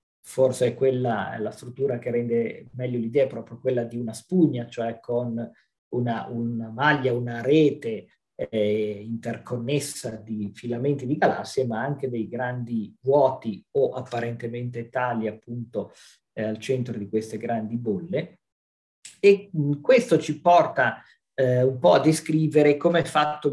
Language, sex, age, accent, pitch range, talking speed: Italian, male, 40-59, native, 115-140 Hz, 145 wpm